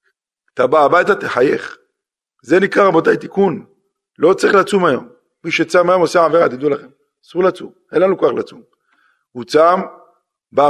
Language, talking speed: Hebrew, 165 wpm